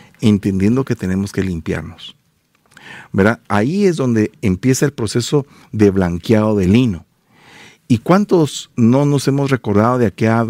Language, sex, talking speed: Spanish, male, 135 wpm